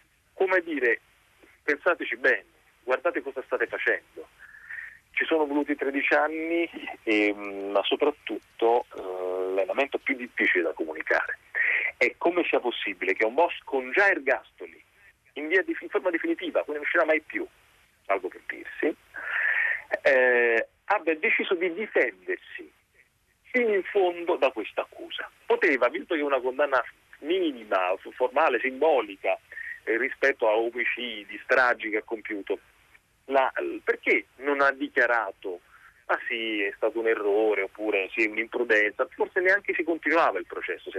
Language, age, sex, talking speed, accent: Italian, 40-59, male, 140 wpm, native